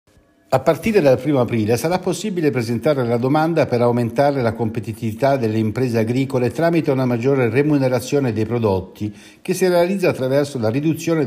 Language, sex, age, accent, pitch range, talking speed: Italian, male, 60-79, native, 105-145 Hz, 155 wpm